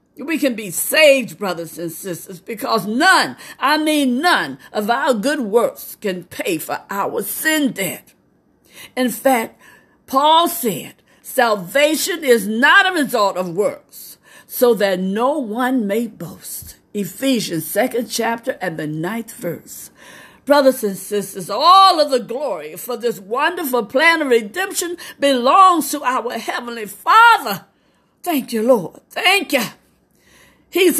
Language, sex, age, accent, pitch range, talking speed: English, female, 50-69, American, 215-290 Hz, 135 wpm